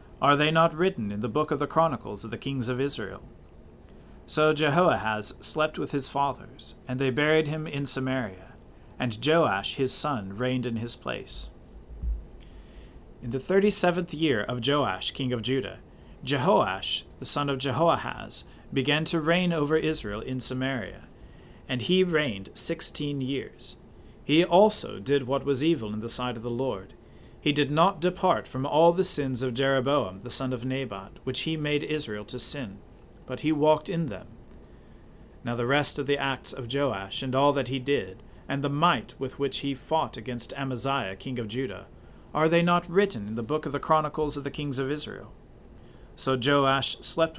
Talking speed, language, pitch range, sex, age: 180 wpm, English, 120-155 Hz, male, 40-59